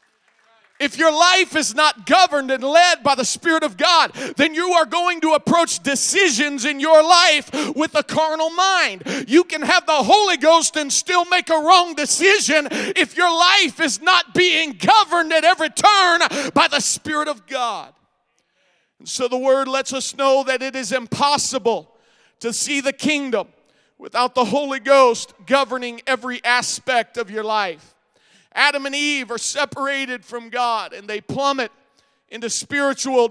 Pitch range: 245-310 Hz